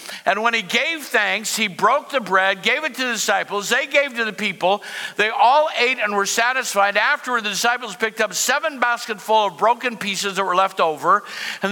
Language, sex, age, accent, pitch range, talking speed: English, male, 60-79, American, 205-280 Hz, 205 wpm